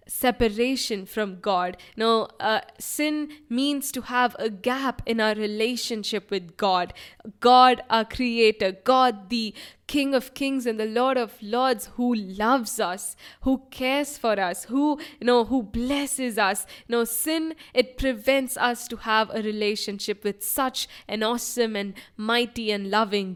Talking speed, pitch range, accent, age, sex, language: 150 wpm, 210-265 Hz, Indian, 10-29, female, English